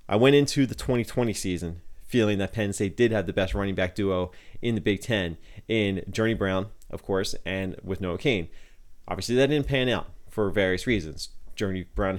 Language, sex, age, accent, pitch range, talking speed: English, male, 30-49, American, 95-110 Hz, 195 wpm